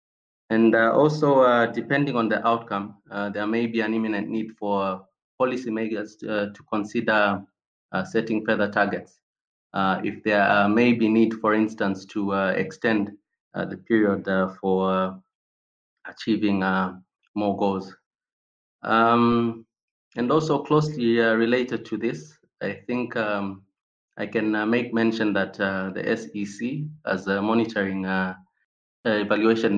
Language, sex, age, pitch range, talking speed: English, male, 30-49, 100-115 Hz, 140 wpm